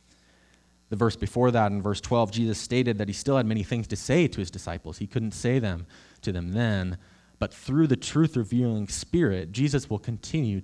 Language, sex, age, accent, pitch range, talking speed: English, male, 20-39, American, 90-115 Hz, 195 wpm